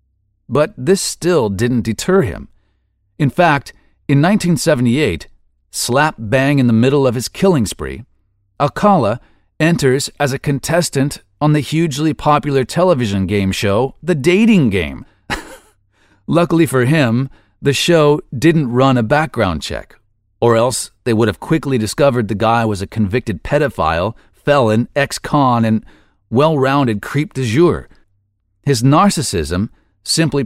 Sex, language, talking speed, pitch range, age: male, English, 130 wpm, 100-145 Hz, 40-59